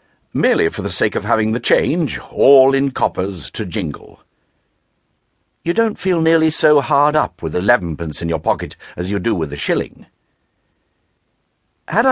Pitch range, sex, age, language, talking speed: 90-145 Hz, male, 60-79, English, 160 wpm